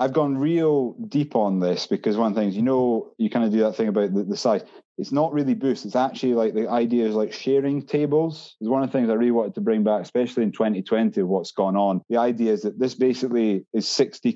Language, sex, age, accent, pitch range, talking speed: English, male, 30-49, British, 105-130 Hz, 250 wpm